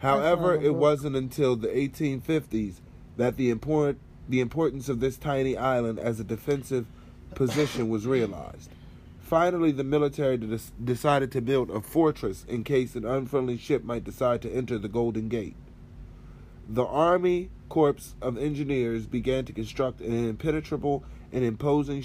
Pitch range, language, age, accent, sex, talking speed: 110-135 Hz, English, 30-49, American, male, 145 wpm